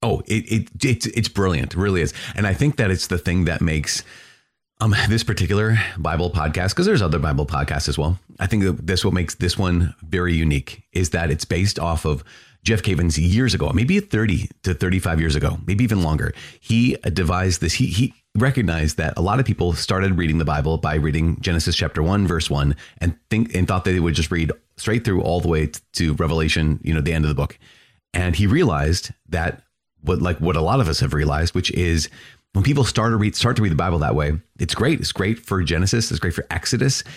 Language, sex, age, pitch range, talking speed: English, male, 30-49, 85-110 Hz, 230 wpm